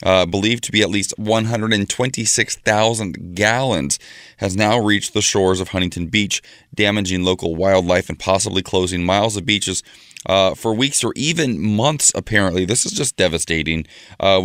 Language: English